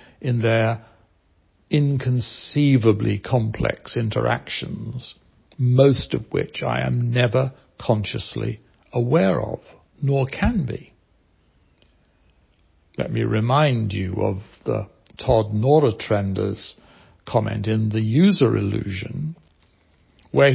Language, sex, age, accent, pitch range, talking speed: English, male, 60-79, British, 100-130 Hz, 90 wpm